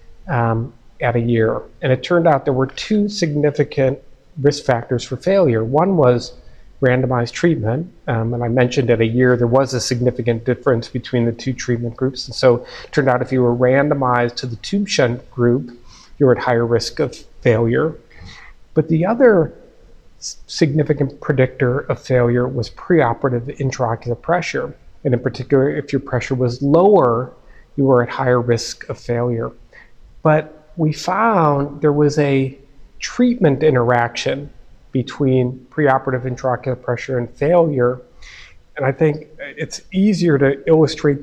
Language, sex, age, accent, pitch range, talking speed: English, male, 40-59, American, 120-145 Hz, 155 wpm